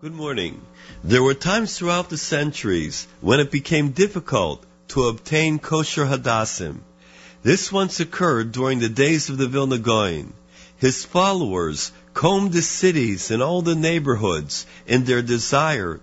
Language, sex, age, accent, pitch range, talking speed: English, male, 50-69, American, 100-160 Hz, 140 wpm